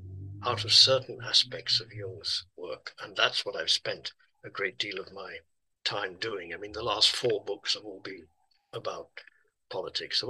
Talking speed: 180 wpm